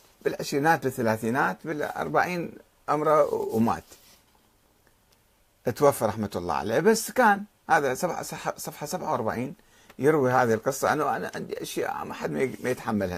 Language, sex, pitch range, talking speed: Arabic, male, 110-175 Hz, 115 wpm